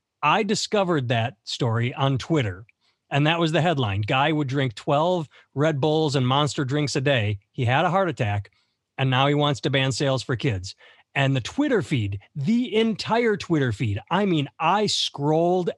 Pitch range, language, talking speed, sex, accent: 125-195 Hz, English, 185 wpm, male, American